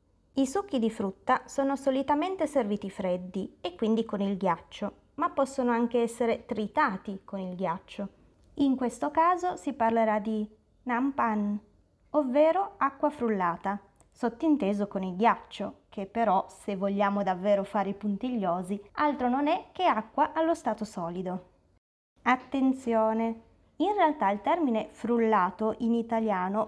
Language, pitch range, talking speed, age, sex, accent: Italian, 200-265 Hz, 135 wpm, 20-39, female, native